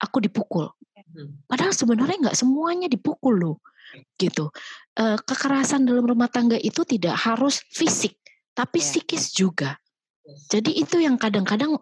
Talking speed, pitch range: 120 wpm, 195-270 Hz